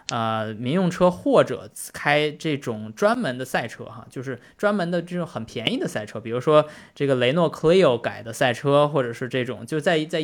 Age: 20-39